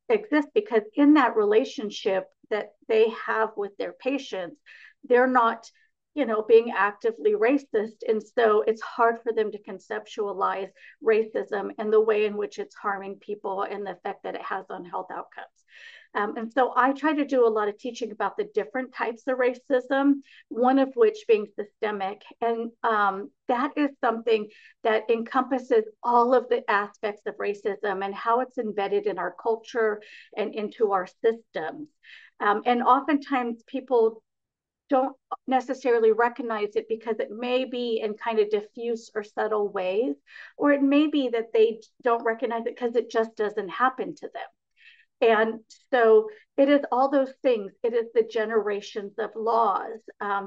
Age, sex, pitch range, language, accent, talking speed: 40-59, female, 210-260 Hz, English, American, 165 wpm